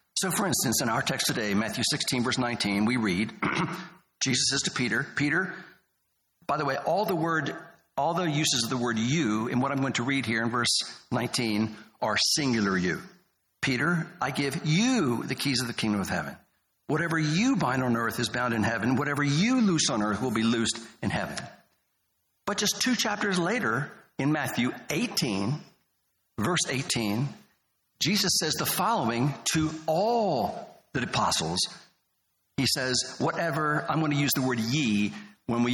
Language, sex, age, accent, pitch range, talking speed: English, male, 60-79, American, 120-170 Hz, 175 wpm